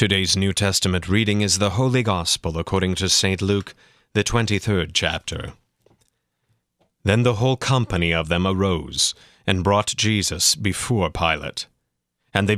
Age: 40-59